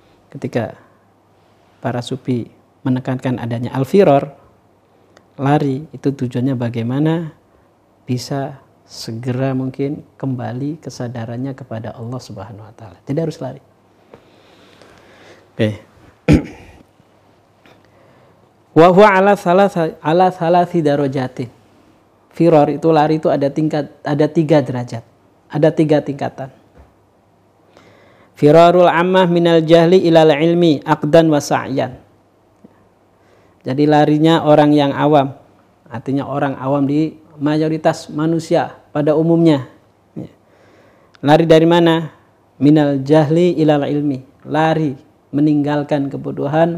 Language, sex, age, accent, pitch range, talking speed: Indonesian, male, 40-59, native, 115-160 Hz, 90 wpm